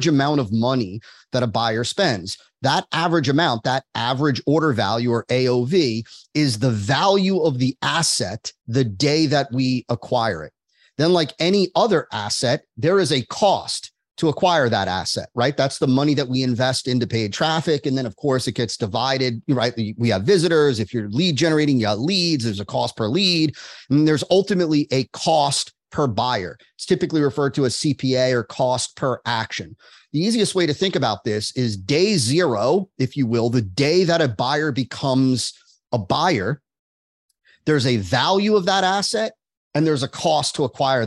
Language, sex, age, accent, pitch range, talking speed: English, male, 30-49, American, 125-160 Hz, 185 wpm